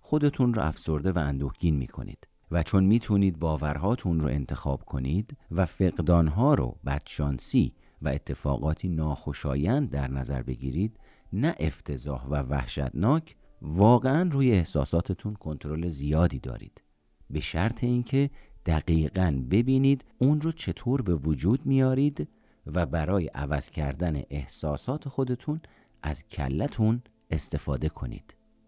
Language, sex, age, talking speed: Persian, male, 50-69, 115 wpm